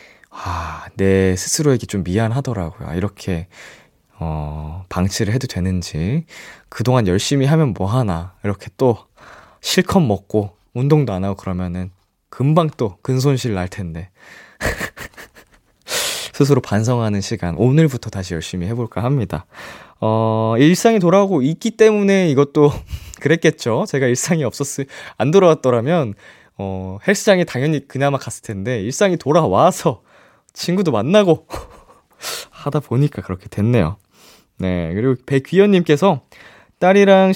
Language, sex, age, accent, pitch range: Korean, male, 20-39, native, 100-155 Hz